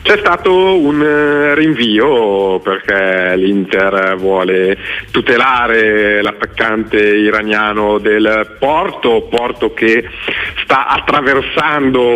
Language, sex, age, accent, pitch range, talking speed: Italian, male, 40-59, native, 105-125 Hz, 80 wpm